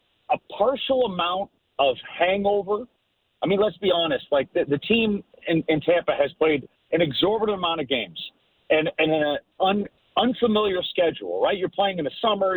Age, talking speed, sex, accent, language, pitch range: 40-59, 165 wpm, male, American, English, 165-220 Hz